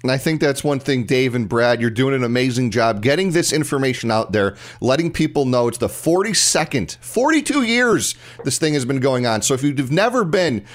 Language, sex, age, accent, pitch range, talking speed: English, male, 40-59, American, 120-165 Hz, 210 wpm